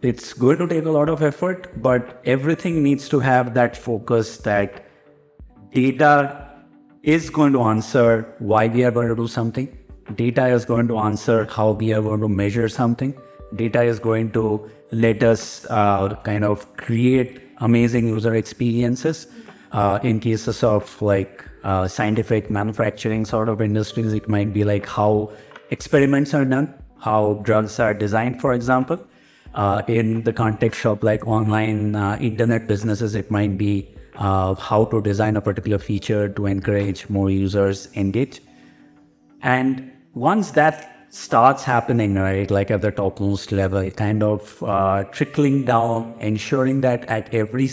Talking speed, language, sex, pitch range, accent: 155 wpm, English, male, 105-125 Hz, Indian